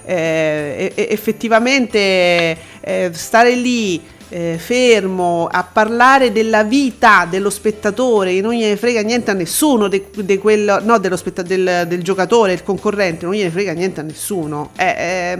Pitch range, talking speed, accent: 190-245 Hz, 150 wpm, native